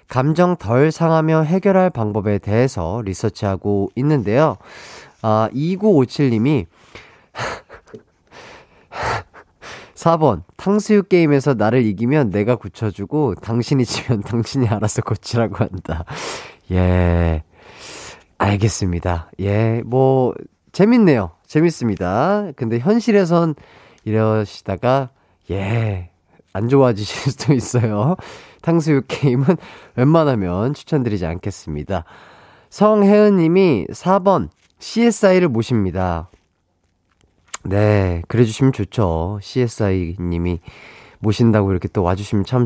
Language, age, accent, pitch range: Korean, 30-49, native, 100-155 Hz